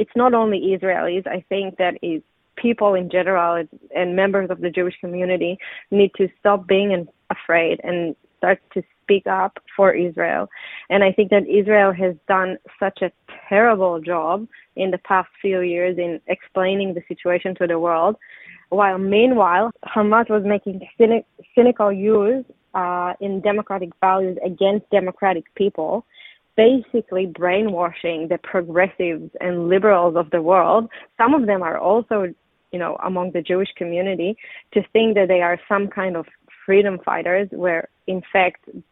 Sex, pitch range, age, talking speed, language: female, 180-205 Hz, 20-39, 150 wpm, Hebrew